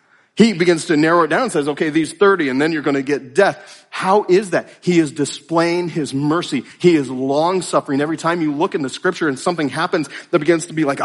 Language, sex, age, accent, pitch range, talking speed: English, male, 40-59, American, 140-175 Hz, 240 wpm